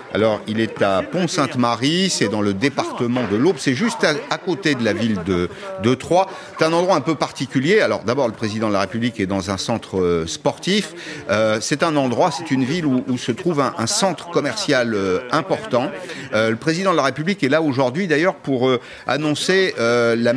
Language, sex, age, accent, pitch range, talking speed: French, male, 50-69, French, 110-150 Hz, 215 wpm